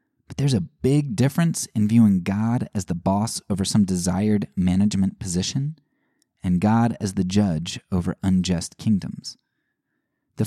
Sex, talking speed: male, 145 wpm